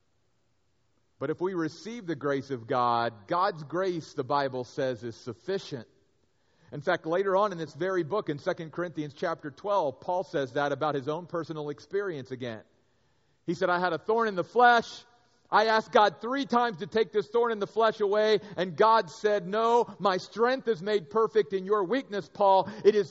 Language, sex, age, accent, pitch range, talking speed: English, male, 40-59, American, 145-210 Hz, 190 wpm